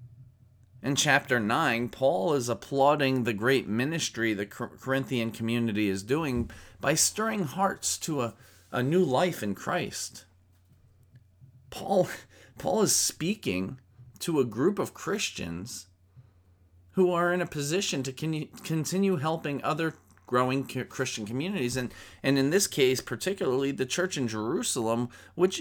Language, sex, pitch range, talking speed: English, male, 105-145 Hz, 130 wpm